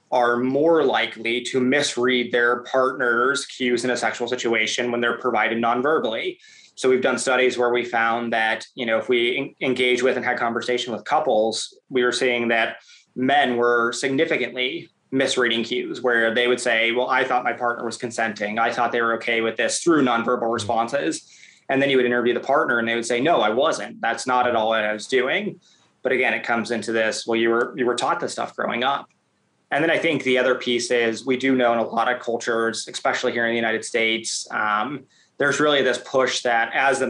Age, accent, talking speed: 20-39, American, 215 wpm